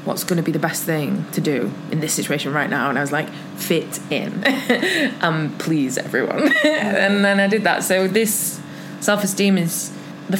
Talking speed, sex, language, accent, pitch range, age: 195 wpm, female, English, British, 155-195 Hz, 20-39